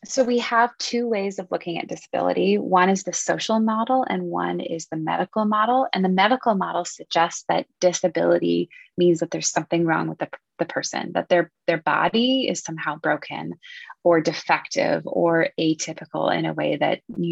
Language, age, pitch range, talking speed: English, 20-39, 165-210 Hz, 180 wpm